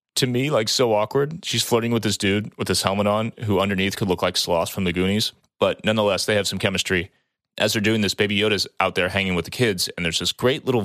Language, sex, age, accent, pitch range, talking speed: English, male, 30-49, American, 90-105 Hz, 255 wpm